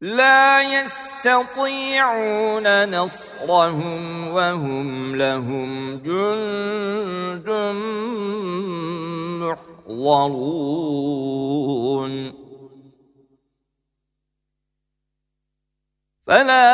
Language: Turkish